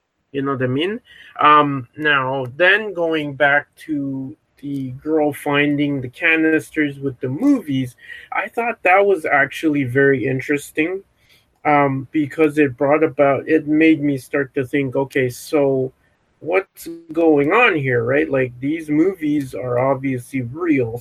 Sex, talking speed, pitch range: male, 145 wpm, 130-155 Hz